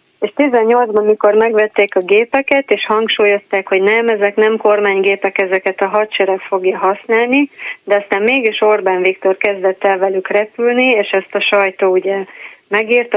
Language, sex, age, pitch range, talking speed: Hungarian, female, 30-49, 200-225 Hz, 150 wpm